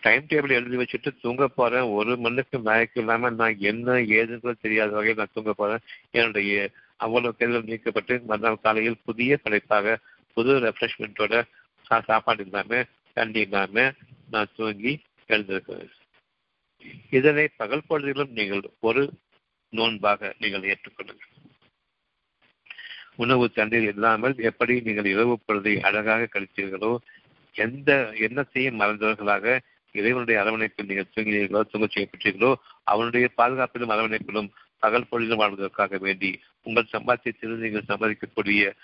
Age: 60-79